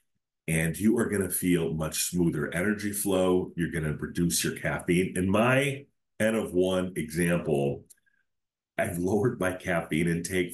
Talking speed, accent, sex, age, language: 140 wpm, American, male, 40-59, English